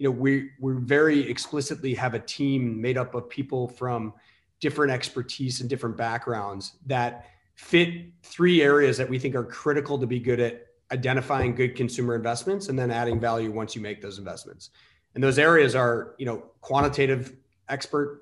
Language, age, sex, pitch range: English, 30-49, male, 115-135 Hz